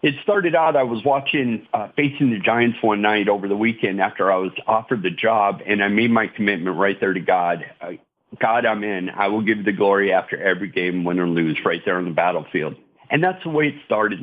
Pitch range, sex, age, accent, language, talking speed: 100-135 Hz, male, 50-69, American, English, 235 wpm